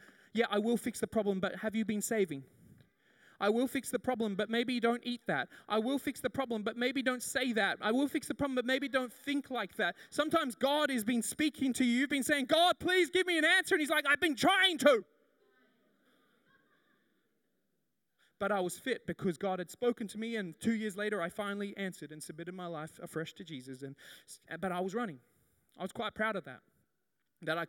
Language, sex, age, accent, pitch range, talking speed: English, male, 20-39, Australian, 160-245 Hz, 220 wpm